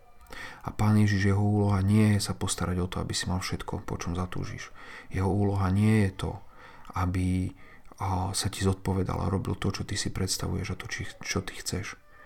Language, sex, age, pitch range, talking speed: Slovak, male, 40-59, 95-105 Hz, 195 wpm